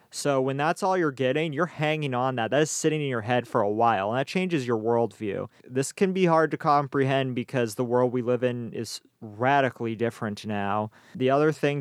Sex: male